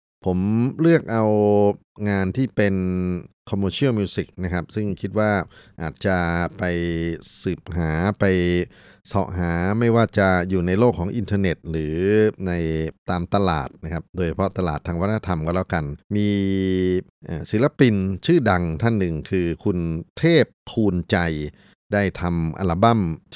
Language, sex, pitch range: Thai, male, 85-110 Hz